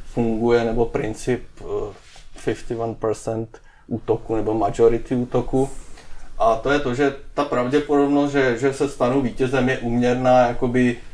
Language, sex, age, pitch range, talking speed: Czech, male, 30-49, 110-120 Hz, 125 wpm